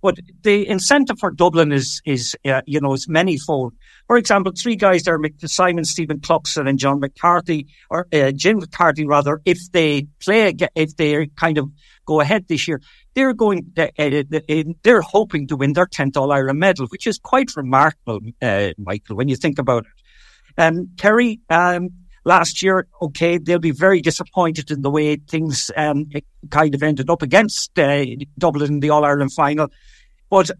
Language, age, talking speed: English, 60-79, 180 wpm